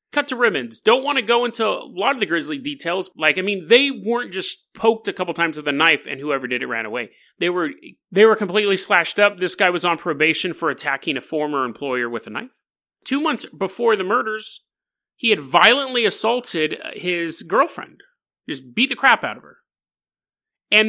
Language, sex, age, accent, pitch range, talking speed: English, male, 30-49, American, 155-235 Hz, 205 wpm